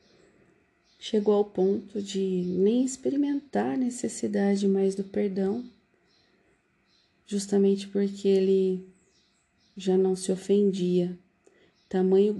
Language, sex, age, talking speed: Portuguese, female, 40-59, 90 wpm